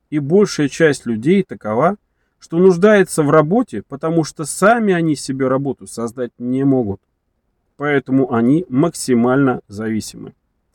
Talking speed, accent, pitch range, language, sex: 125 wpm, native, 125-185 Hz, Russian, male